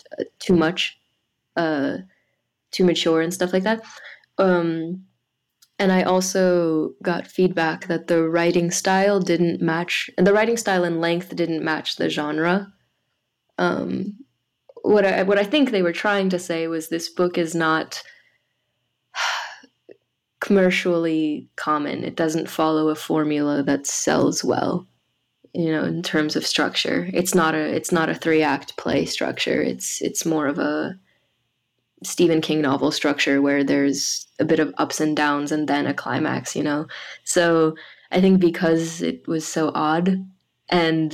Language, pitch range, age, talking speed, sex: English, 155-180 Hz, 20-39, 155 wpm, female